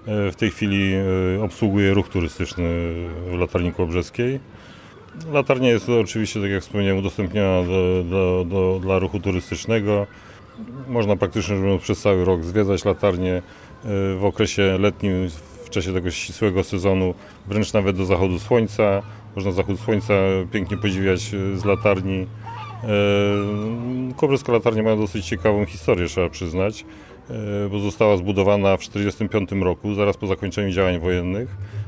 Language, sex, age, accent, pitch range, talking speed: Polish, male, 40-59, native, 95-110 Hz, 130 wpm